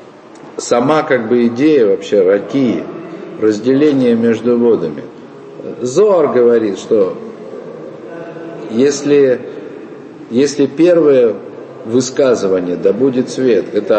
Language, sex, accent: Russian, male, native